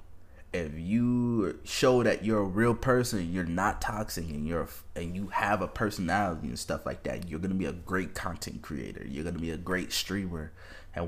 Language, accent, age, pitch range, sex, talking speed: English, American, 20-39, 85-110 Hz, male, 195 wpm